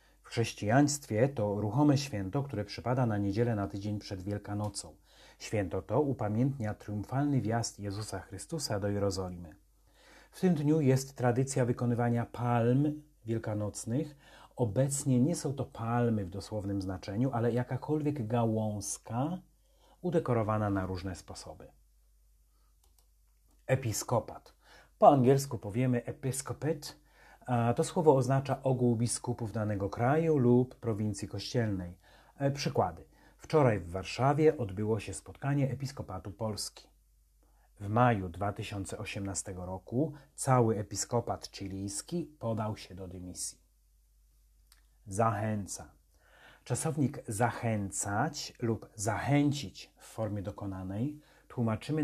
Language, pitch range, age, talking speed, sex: Polish, 100-130 Hz, 30-49, 105 wpm, male